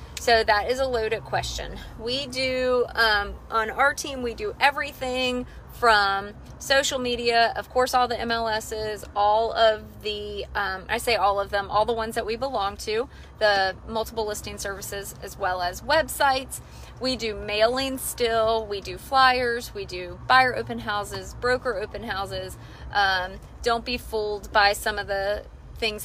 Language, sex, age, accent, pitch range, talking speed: English, female, 30-49, American, 200-250 Hz, 165 wpm